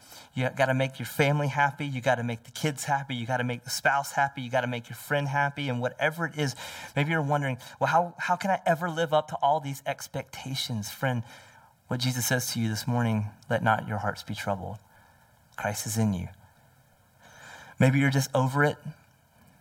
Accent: American